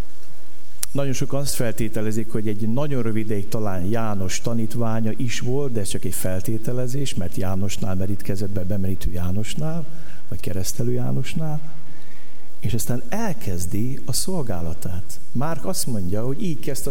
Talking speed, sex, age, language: 140 wpm, male, 60-79, Hungarian